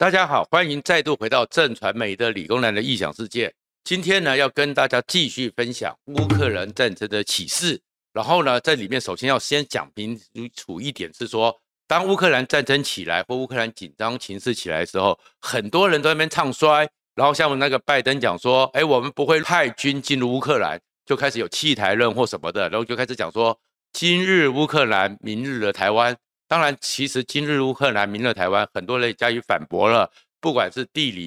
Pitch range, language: 115-145 Hz, Chinese